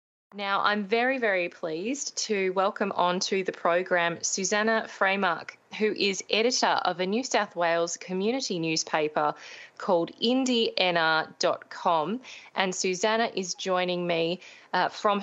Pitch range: 170-200 Hz